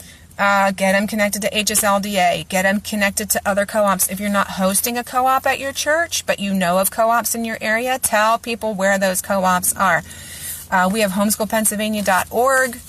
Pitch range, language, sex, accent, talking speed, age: 190-225 Hz, English, female, American, 180 wpm, 30-49